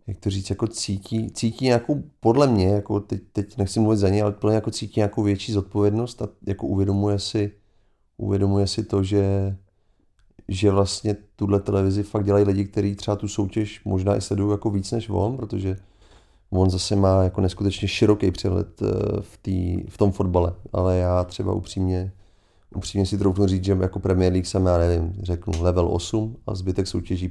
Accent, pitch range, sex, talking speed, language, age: native, 90-105 Hz, male, 180 wpm, Czech, 30-49